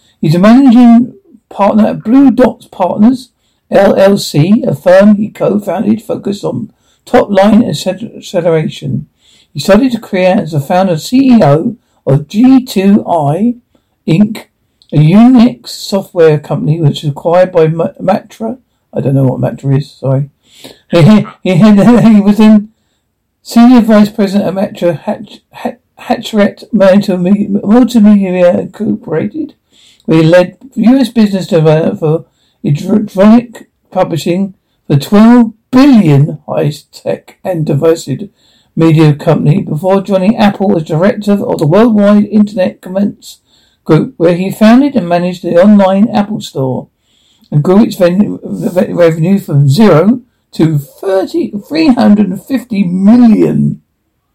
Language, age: English, 60-79